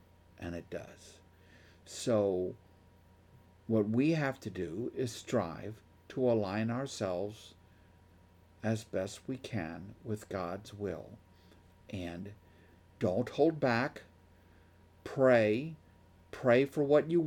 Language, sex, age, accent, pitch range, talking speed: English, male, 50-69, American, 90-130 Hz, 105 wpm